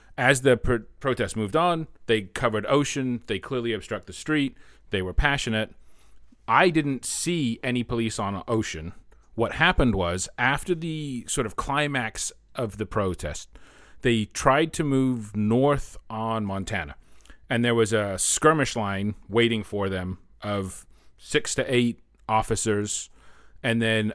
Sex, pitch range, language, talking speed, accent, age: male, 105-135 Hz, English, 145 wpm, American, 40-59